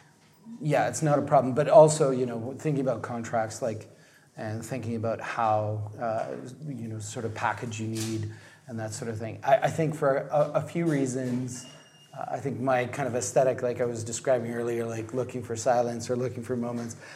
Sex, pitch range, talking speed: male, 115-145 Hz, 205 wpm